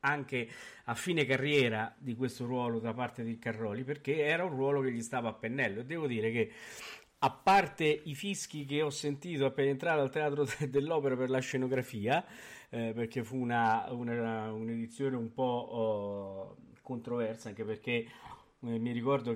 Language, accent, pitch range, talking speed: Italian, native, 115-155 Hz, 170 wpm